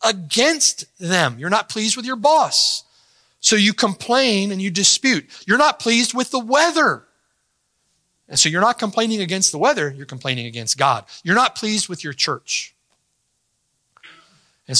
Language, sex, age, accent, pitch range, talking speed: English, male, 40-59, American, 140-220 Hz, 160 wpm